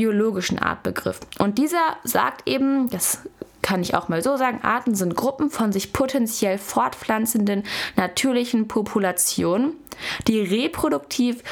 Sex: female